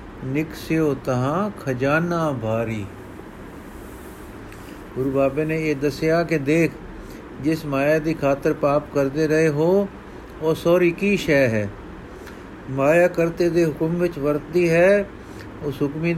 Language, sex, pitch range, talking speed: Punjabi, male, 135-165 Hz, 125 wpm